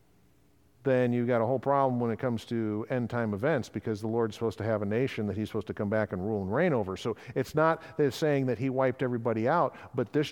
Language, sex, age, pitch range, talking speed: English, male, 50-69, 115-155 Hz, 245 wpm